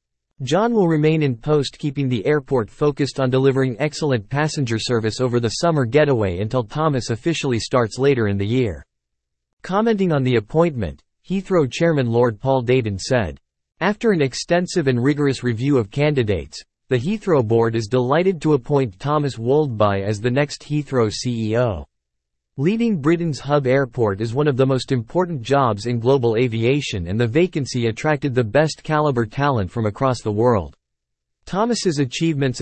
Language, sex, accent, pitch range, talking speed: English, male, American, 115-150 Hz, 160 wpm